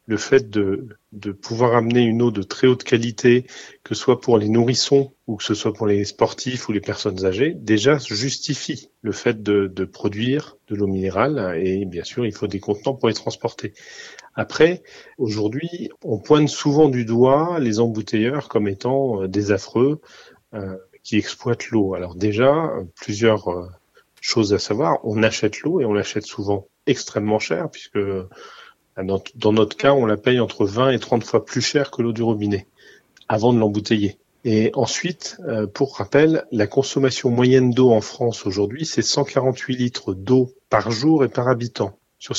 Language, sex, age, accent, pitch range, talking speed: French, male, 30-49, French, 105-130 Hz, 175 wpm